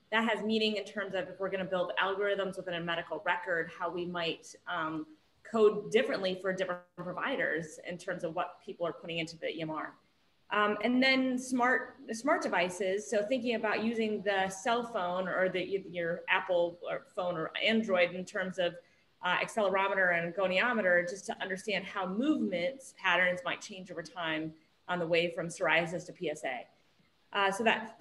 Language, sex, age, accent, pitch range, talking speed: English, female, 30-49, American, 175-215 Hz, 175 wpm